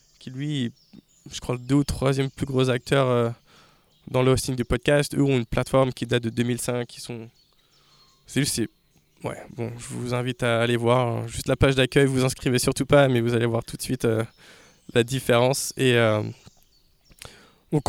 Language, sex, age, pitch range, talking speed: French, male, 20-39, 125-155 Hz, 195 wpm